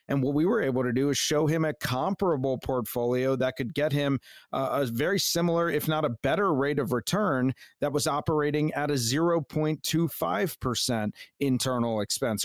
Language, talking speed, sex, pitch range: English, 170 wpm, male, 120-150 Hz